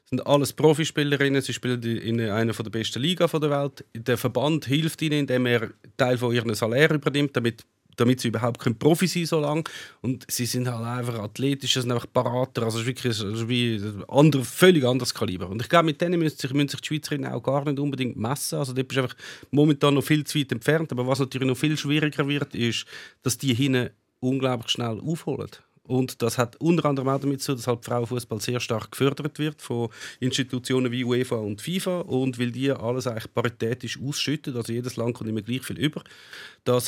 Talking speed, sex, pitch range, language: 205 wpm, male, 115-140 Hz, German